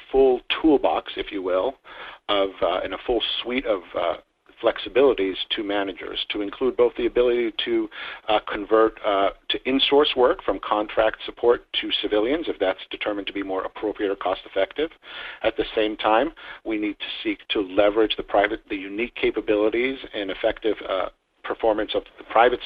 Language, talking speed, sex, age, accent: English, 170 wpm, male, 50-69, American